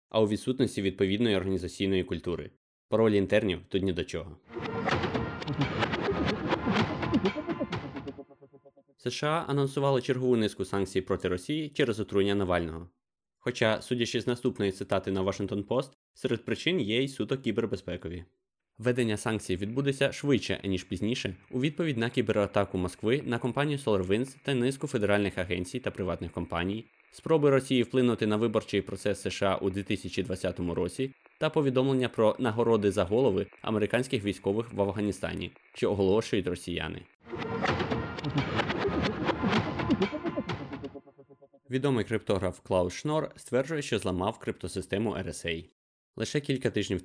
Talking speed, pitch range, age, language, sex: 115 wpm, 95-130 Hz, 20-39, Ukrainian, male